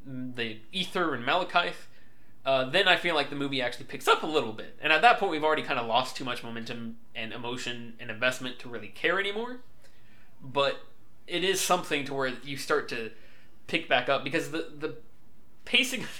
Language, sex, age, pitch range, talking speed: English, male, 20-39, 115-140 Hz, 200 wpm